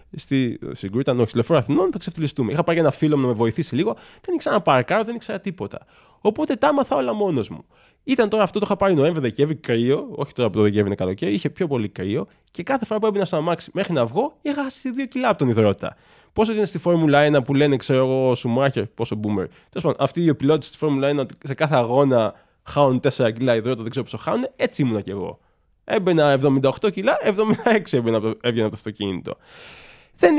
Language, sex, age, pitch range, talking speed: Greek, male, 20-39, 120-190 Hz, 160 wpm